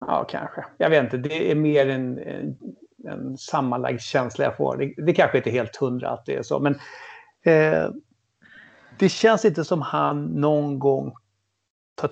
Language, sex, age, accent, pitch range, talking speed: English, male, 60-79, Swedish, 140-185 Hz, 180 wpm